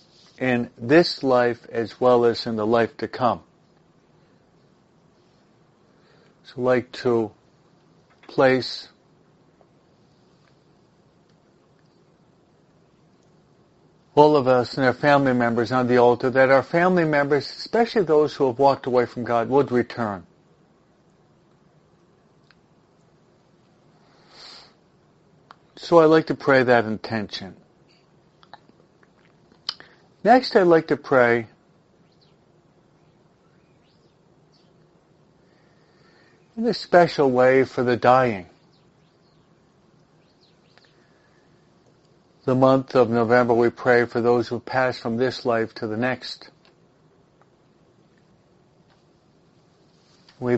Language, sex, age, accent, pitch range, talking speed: English, male, 50-69, American, 120-175 Hz, 90 wpm